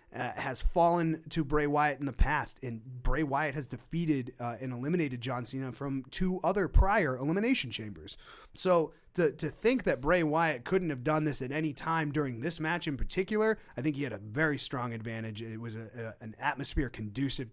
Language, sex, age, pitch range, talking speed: English, male, 30-49, 120-155 Hz, 200 wpm